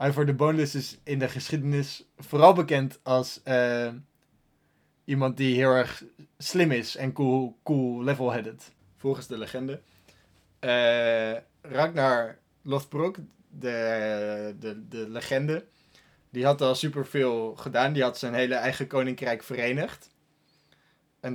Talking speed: 130 wpm